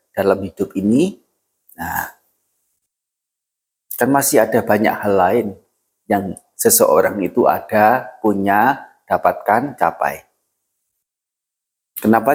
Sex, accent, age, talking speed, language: male, native, 40-59, 85 wpm, Indonesian